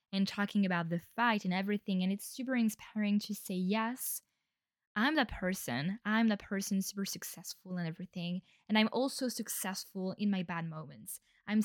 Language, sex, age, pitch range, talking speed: English, female, 10-29, 185-245 Hz, 170 wpm